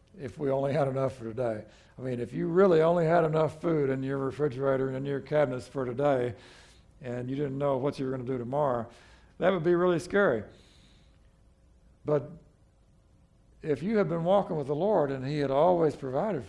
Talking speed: 195 wpm